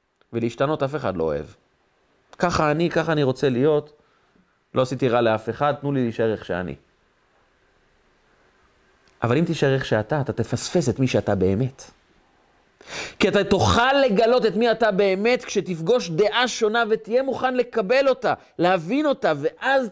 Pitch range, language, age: 130-215 Hz, Hebrew, 30-49